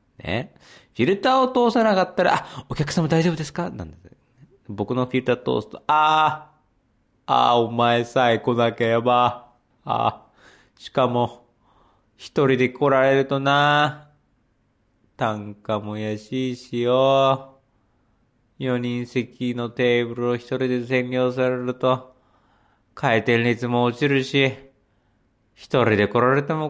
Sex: male